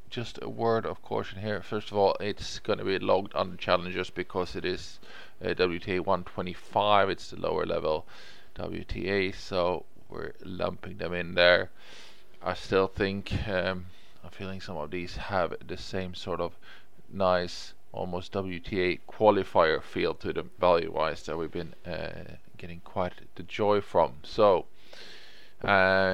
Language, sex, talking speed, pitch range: English, male, 150 wpm, 90-110 Hz